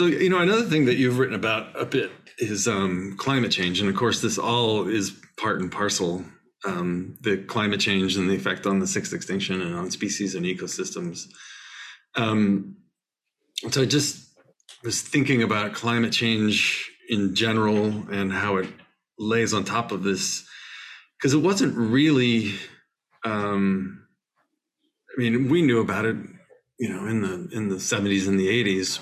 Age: 40-59